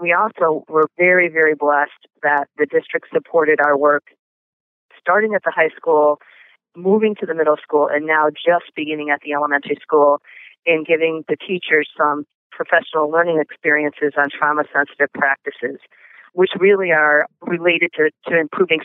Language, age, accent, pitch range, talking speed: English, 40-59, American, 145-165 Hz, 155 wpm